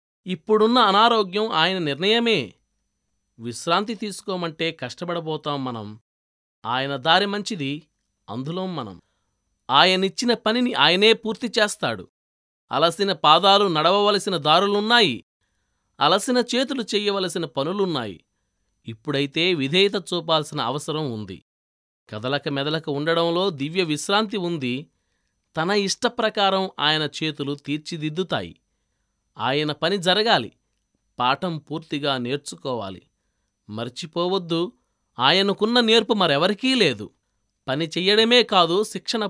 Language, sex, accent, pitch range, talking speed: Telugu, male, native, 135-200 Hz, 85 wpm